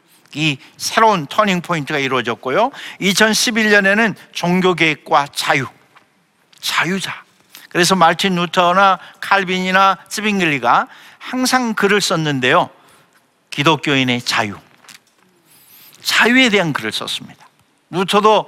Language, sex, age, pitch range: Korean, male, 50-69, 155-215 Hz